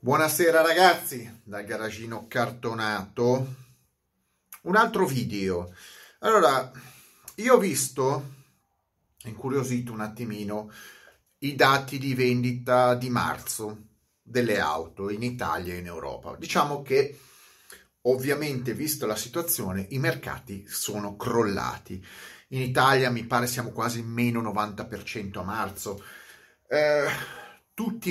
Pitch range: 105-145 Hz